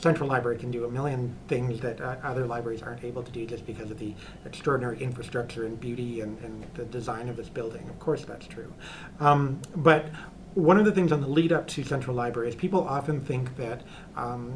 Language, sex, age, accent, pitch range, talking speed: English, male, 30-49, American, 120-155 Hz, 215 wpm